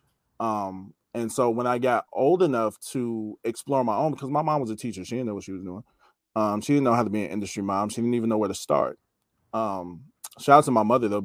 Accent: American